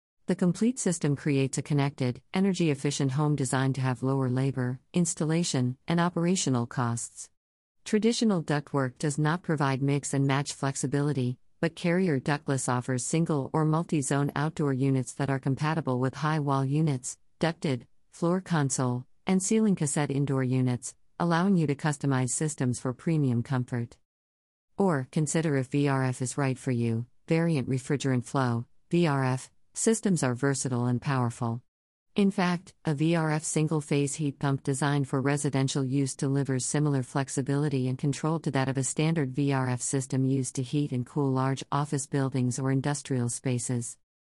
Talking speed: 150 wpm